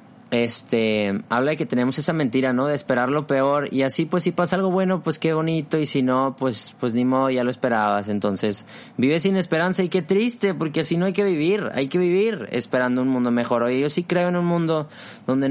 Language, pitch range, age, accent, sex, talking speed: Spanish, 115-155 Hz, 20-39, Mexican, male, 230 wpm